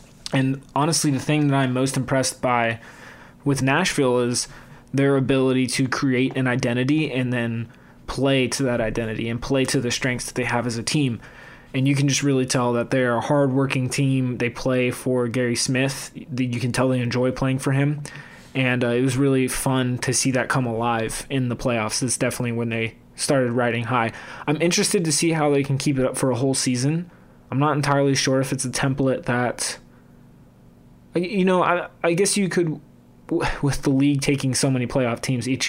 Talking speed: 200 wpm